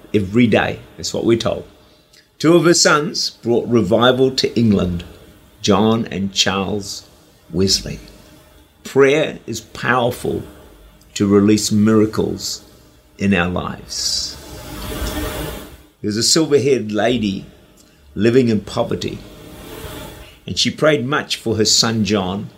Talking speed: 110 wpm